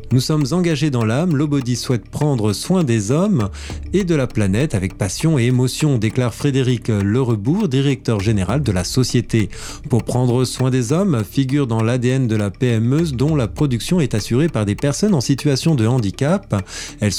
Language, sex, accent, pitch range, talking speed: French, male, French, 110-145 Hz, 180 wpm